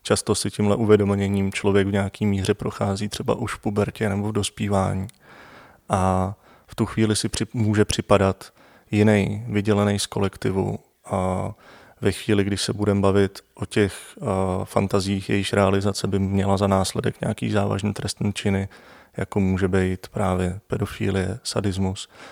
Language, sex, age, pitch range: Czech, male, 20-39, 95-110 Hz